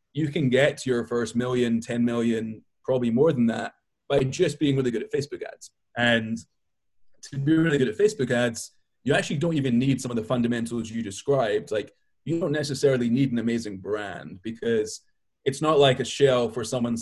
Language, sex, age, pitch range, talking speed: English, male, 20-39, 115-140 Hz, 195 wpm